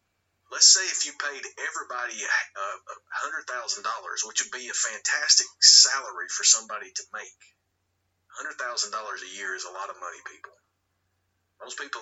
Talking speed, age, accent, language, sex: 140 wpm, 30-49, American, English, male